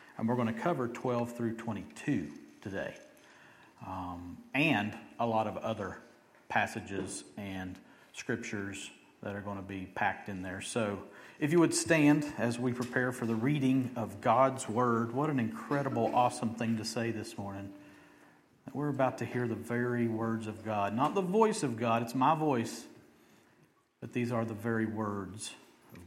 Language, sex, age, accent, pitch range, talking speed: English, male, 50-69, American, 110-135 Hz, 170 wpm